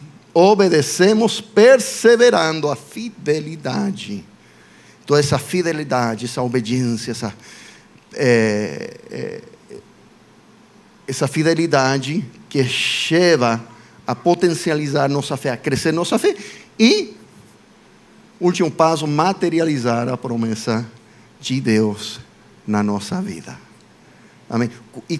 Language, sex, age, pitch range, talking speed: Portuguese, male, 50-69, 130-195 Hz, 90 wpm